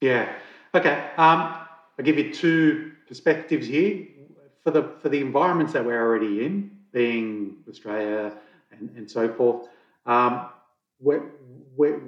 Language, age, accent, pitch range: English, 30-49, Australian, 115-150 Hz